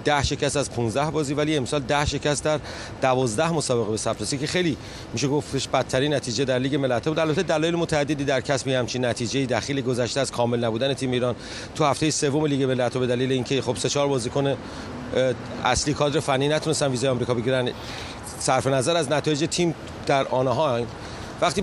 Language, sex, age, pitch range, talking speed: Persian, male, 40-59, 130-155 Hz, 185 wpm